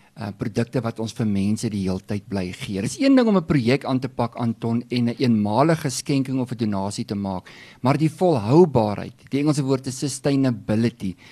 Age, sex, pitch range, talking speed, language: 50-69, male, 110-140 Hz, 200 wpm, English